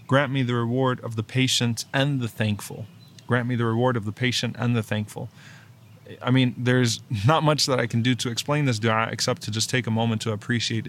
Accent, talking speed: American, 225 wpm